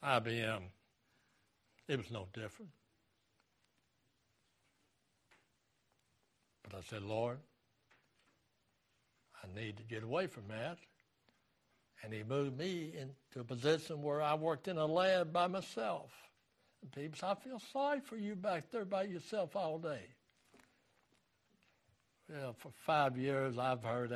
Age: 60-79